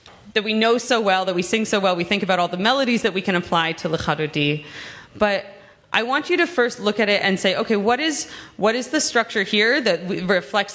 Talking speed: 235 wpm